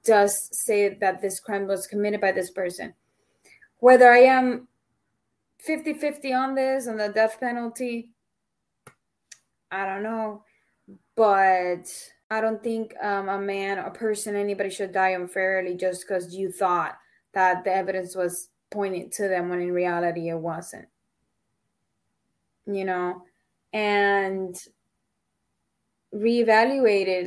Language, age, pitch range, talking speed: English, 20-39, 190-220 Hz, 125 wpm